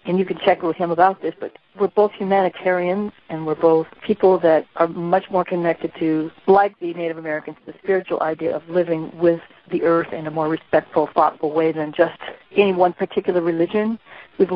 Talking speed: 195 wpm